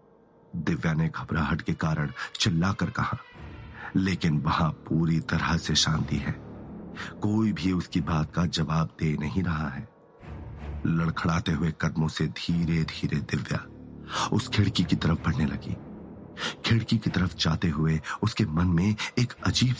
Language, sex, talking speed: Hindi, male, 65 wpm